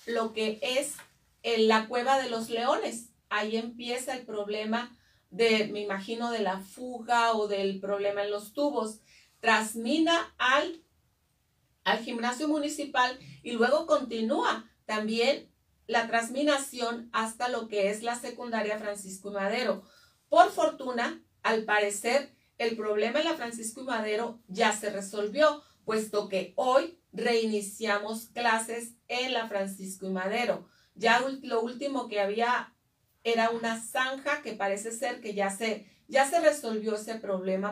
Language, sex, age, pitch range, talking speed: Spanish, female, 40-59, 210-250 Hz, 135 wpm